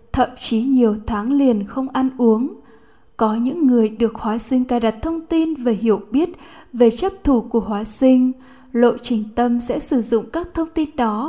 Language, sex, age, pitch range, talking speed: Vietnamese, female, 10-29, 225-260 Hz, 195 wpm